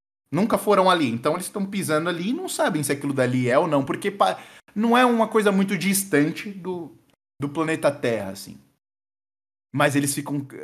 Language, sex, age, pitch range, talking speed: Portuguese, male, 20-39, 120-155 Hz, 180 wpm